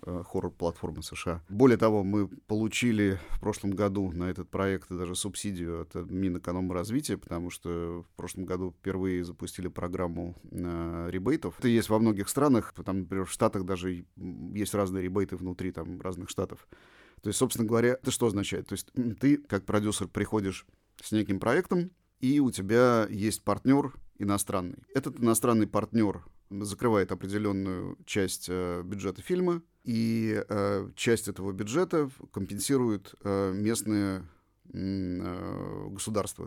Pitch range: 95-110 Hz